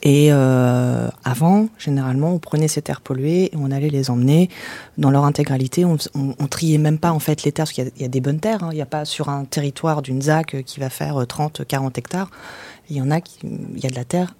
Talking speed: 260 wpm